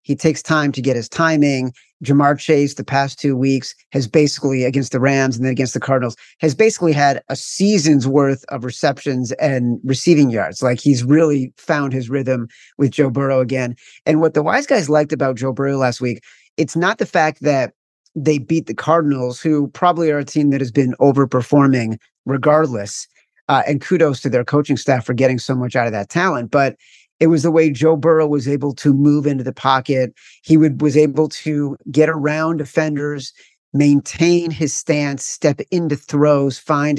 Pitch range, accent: 130-155 Hz, American